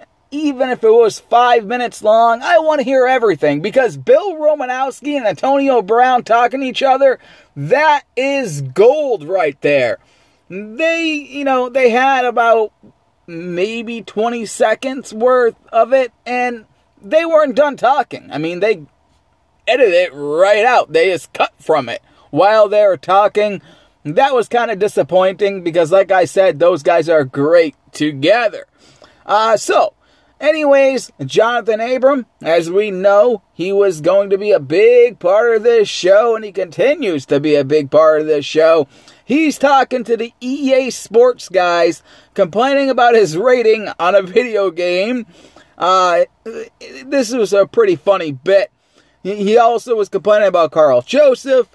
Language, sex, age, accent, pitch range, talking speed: English, male, 30-49, American, 190-270 Hz, 155 wpm